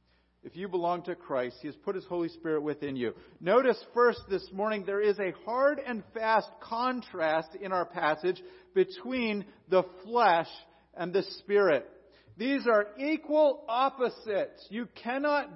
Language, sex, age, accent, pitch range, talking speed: English, male, 50-69, American, 185-245 Hz, 150 wpm